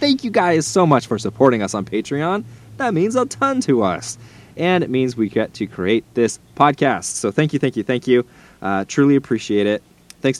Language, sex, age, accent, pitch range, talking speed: English, male, 20-39, American, 95-135 Hz, 215 wpm